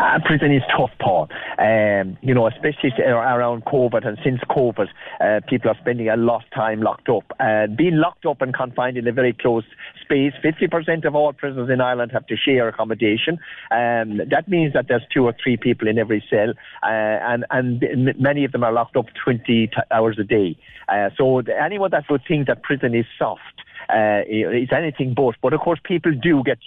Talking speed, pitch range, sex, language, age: 205 wpm, 115-145 Hz, male, English, 40-59